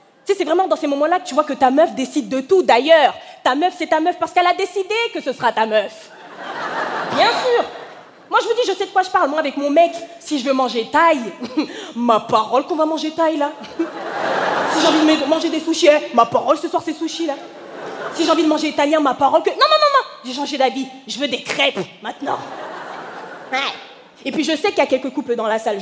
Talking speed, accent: 250 wpm, French